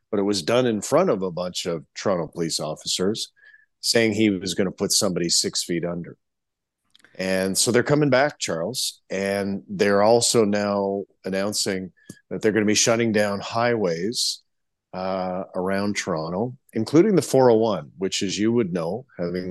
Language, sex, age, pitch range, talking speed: English, male, 40-59, 95-115 Hz, 165 wpm